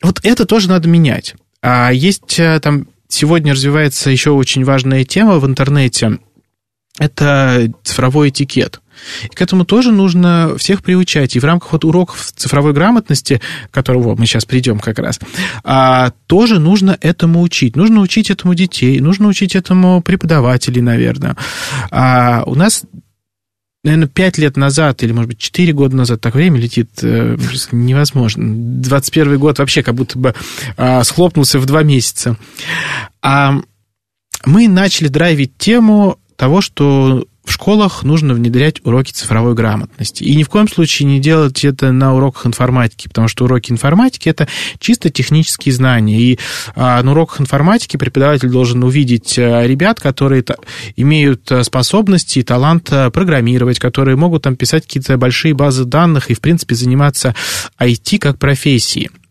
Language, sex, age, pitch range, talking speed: Russian, male, 20-39, 125-165 Hz, 145 wpm